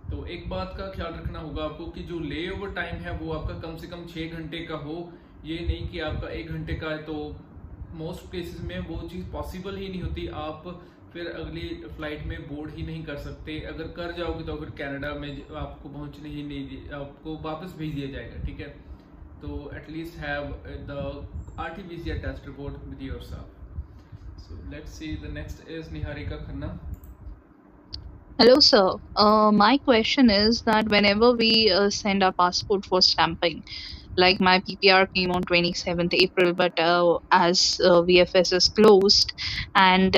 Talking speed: 160 wpm